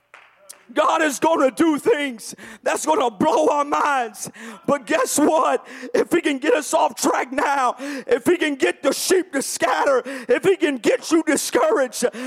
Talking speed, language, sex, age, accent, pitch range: 180 wpm, English, male, 40-59, American, 225-315 Hz